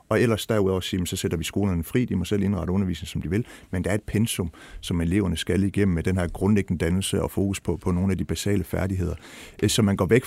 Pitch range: 95-115 Hz